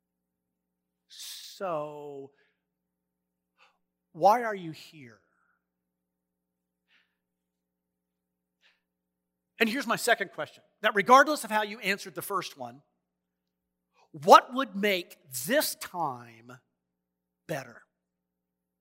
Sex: male